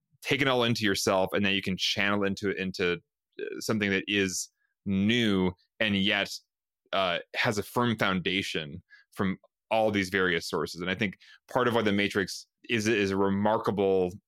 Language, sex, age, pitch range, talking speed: English, male, 20-39, 95-115 Hz, 170 wpm